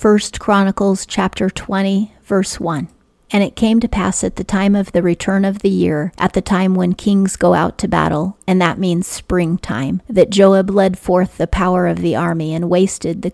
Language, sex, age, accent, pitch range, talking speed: English, female, 40-59, American, 170-195 Hz, 205 wpm